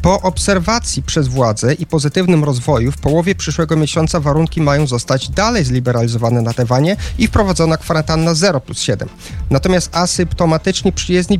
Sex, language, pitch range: male, Polish, 130-180 Hz